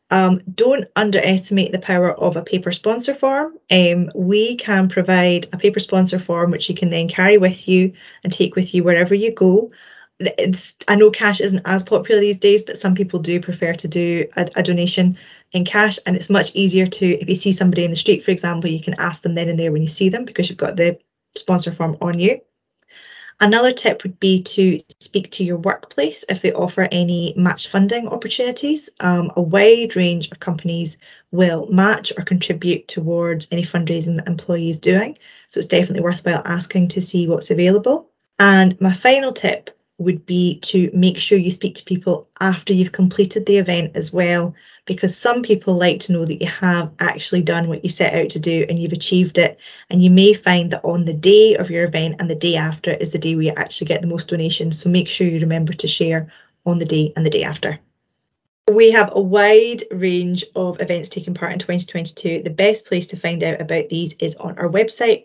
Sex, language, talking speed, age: female, English, 210 wpm, 20-39